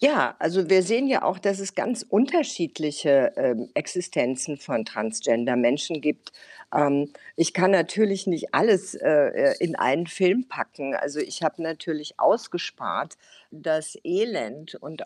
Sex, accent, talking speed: female, German, 135 wpm